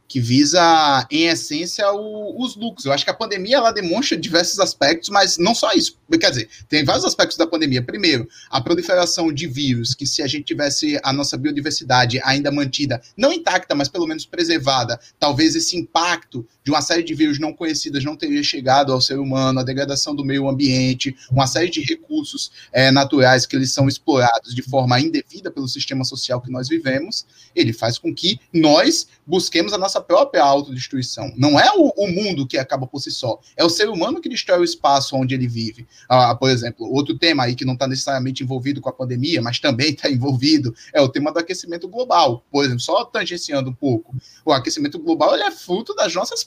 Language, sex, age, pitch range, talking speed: Portuguese, male, 20-39, 130-190 Hz, 200 wpm